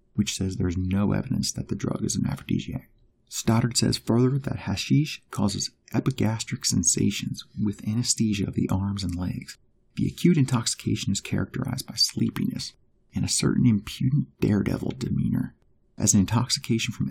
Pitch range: 95-115 Hz